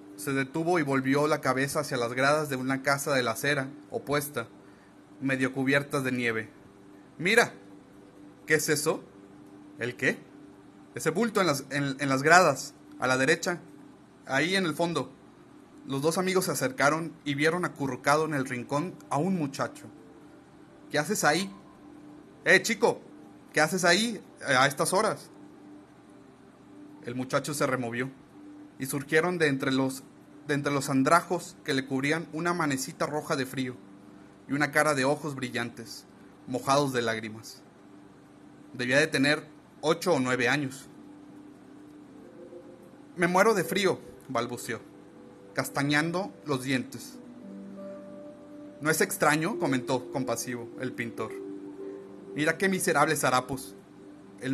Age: 30-49